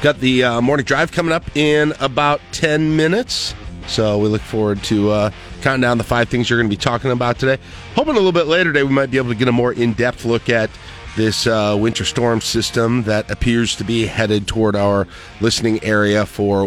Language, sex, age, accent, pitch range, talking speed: English, male, 40-59, American, 95-125 Hz, 220 wpm